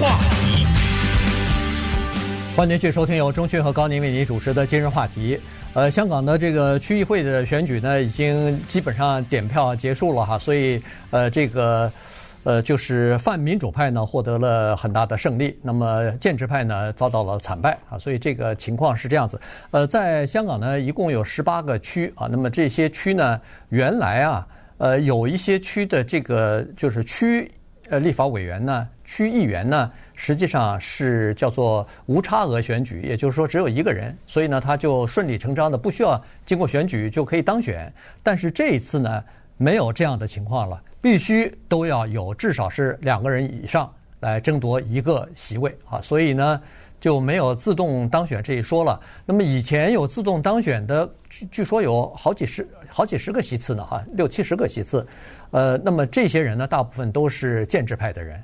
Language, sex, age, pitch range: Chinese, male, 50-69, 115-155 Hz